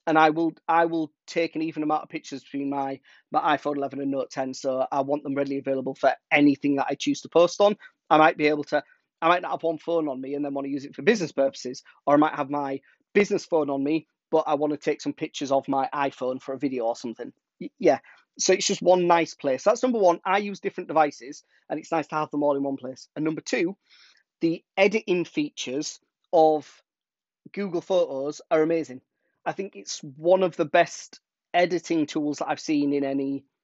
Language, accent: English, British